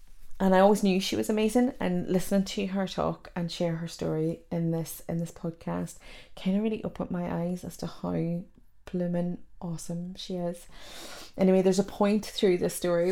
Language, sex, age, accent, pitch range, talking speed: English, female, 20-39, British, 140-180 Hz, 190 wpm